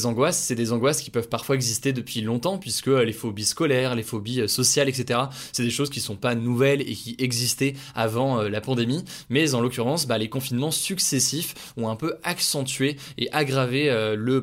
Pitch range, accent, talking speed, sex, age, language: 120-145 Hz, French, 185 wpm, male, 20-39, French